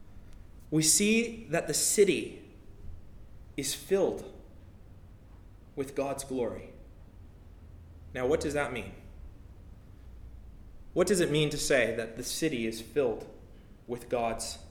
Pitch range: 100-140 Hz